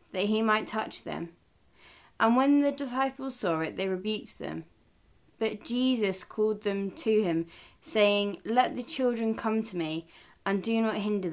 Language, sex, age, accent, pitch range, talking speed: English, female, 20-39, British, 170-230 Hz, 165 wpm